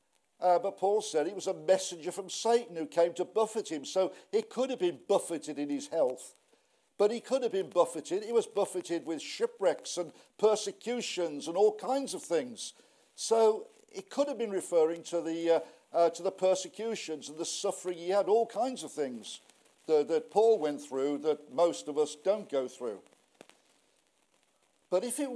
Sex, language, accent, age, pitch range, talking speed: male, English, British, 50-69, 165-225 Hz, 185 wpm